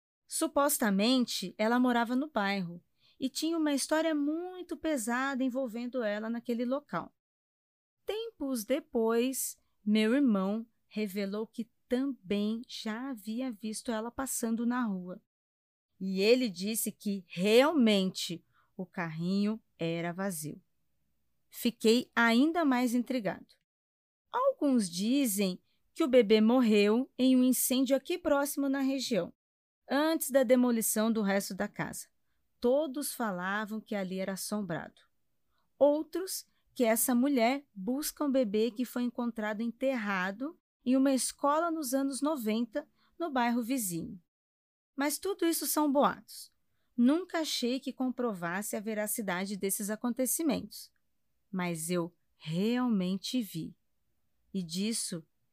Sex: female